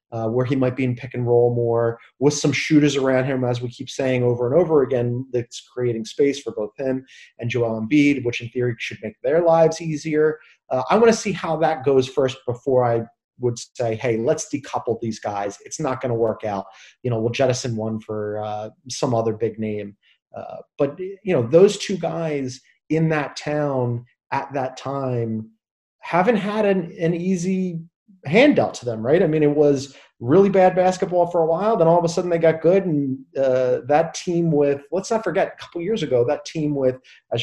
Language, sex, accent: English, male, American